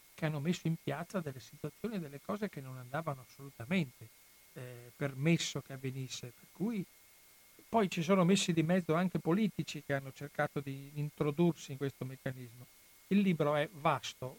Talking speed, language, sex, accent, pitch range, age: 160 wpm, Italian, male, native, 135-170 Hz, 60-79